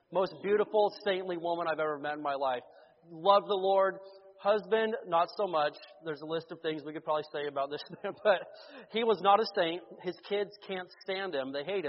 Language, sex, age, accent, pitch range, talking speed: English, male, 30-49, American, 175-240 Hz, 205 wpm